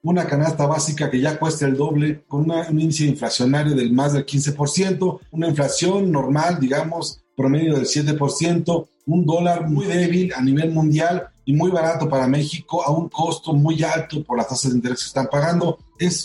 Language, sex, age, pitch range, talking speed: Spanish, male, 40-59, 140-160 Hz, 185 wpm